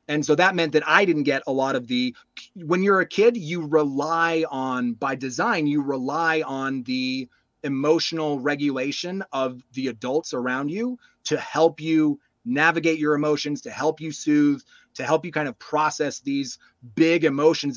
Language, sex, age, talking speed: English, male, 30-49, 170 wpm